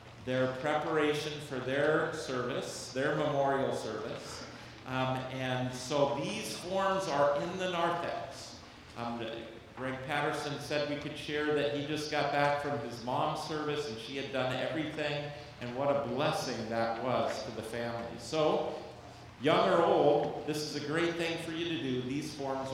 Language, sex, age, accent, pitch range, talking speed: English, male, 40-59, American, 125-160 Hz, 165 wpm